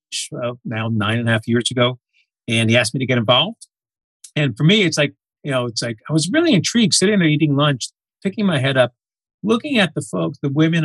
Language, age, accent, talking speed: English, 50-69, American, 230 wpm